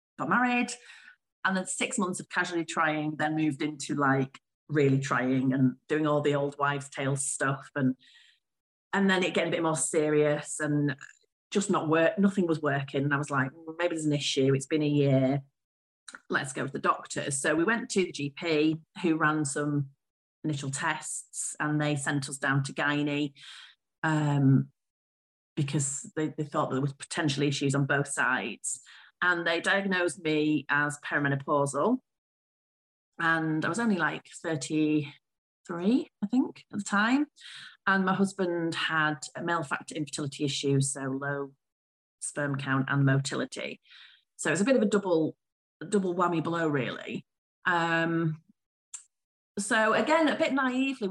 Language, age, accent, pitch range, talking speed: English, 40-59, British, 140-185 Hz, 160 wpm